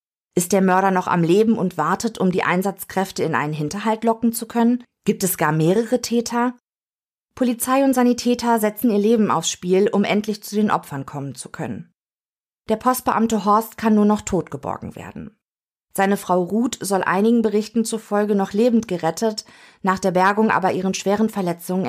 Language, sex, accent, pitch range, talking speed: German, female, German, 185-220 Hz, 175 wpm